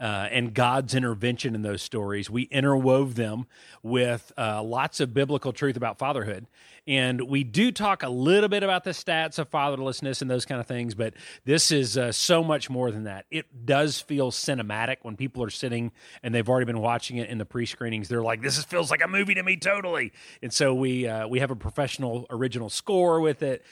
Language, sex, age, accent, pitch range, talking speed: English, male, 30-49, American, 115-140 Hz, 205 wpm